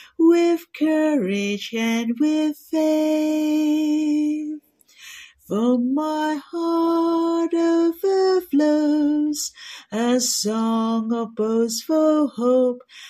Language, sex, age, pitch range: Chinese, female, 40-59, 285-390 Hz